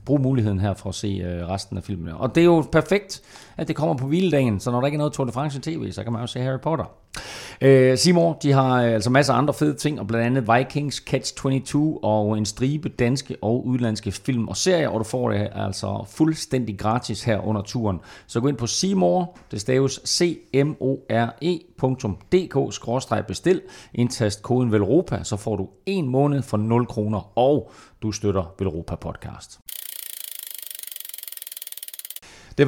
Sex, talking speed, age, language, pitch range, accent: male, 175 wpm, 30-49, Danish, 105-140 Hz, native